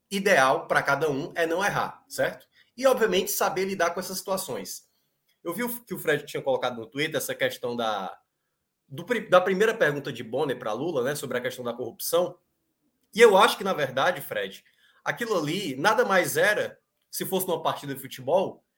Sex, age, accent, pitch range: male, 20-39, Brazilian, 170-225 Hz